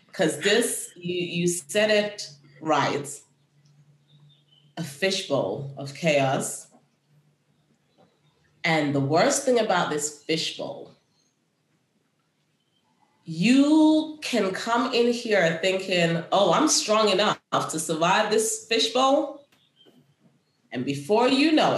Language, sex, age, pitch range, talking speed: English, female, 30-49, 150-205 Hz, 100 wpm